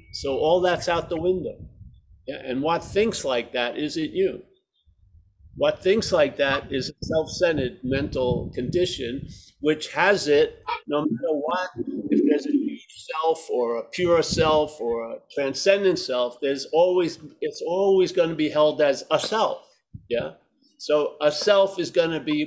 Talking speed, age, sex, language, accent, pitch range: 165 wpm, 50-69, male, English, American, 150-200 Hz